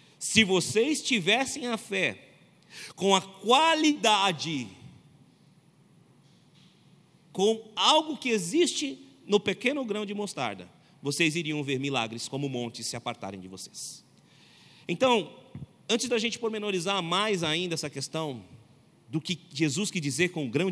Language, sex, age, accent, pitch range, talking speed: Portuguese, male, 40-59, Brazilian, 155-215 Hz, 125 wpm